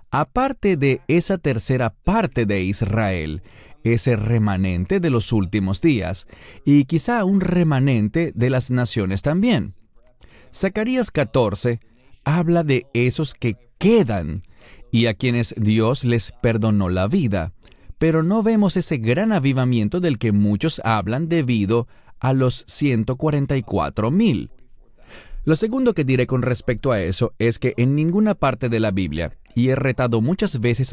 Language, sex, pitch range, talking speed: English, male, 110-155 Hz, 140 wpm